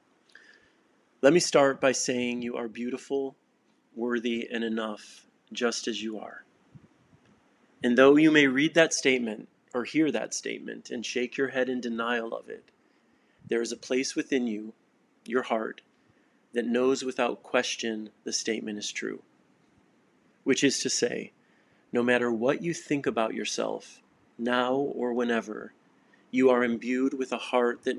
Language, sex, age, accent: English, male, 30-49, American